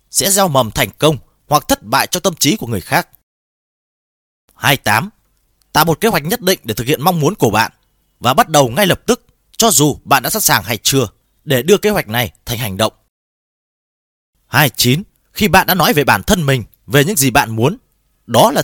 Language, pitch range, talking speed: Vietnamese, 110-165 Hz, 215 wpm